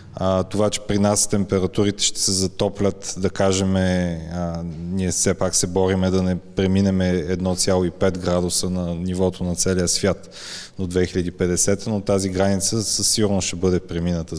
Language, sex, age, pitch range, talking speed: Bulgarian, male, 20-39, 85-95 Hz, 150 wpm